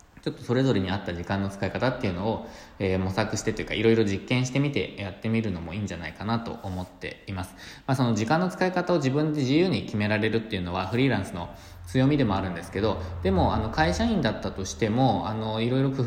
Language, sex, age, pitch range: Japanese, male, 20-39, 95-125 Hz